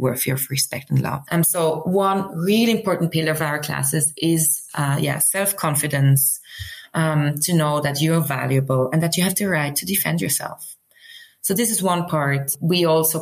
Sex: female